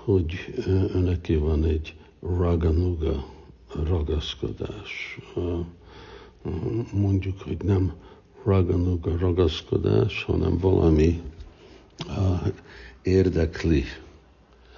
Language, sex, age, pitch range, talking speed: Hungarian, male, 60-79, 80-90 Hz, 55 wpm